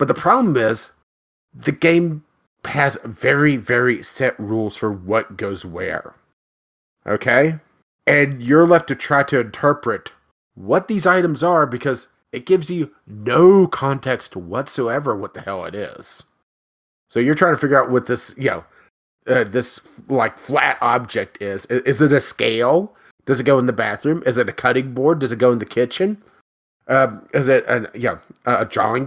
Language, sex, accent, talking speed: English, male, American, 175 wpm